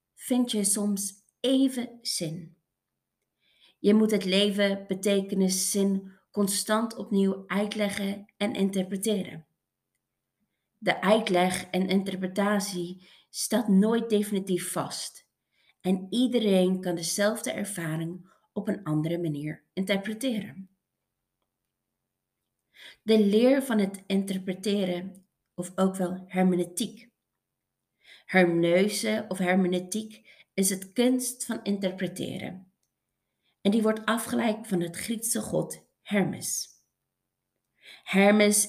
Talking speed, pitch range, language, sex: 95 wpm, 185-215 Hz, Dutch, female